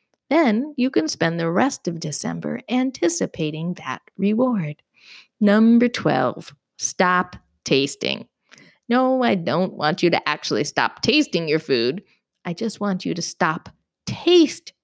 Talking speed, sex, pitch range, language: 135 wpm, female, 170-245 Hz, English